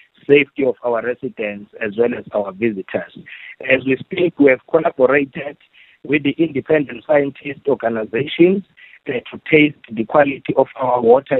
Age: 50-69